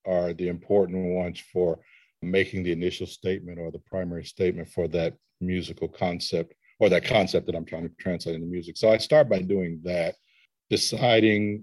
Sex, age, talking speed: male, 50-69, 175 wpm